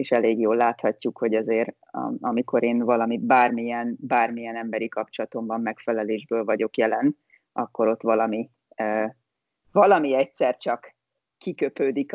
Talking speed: 120 wpm